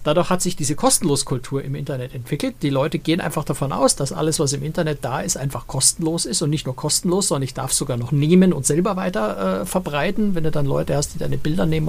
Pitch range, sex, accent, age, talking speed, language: 140-175 Hz, male, German, 60-79, 245 wpm, German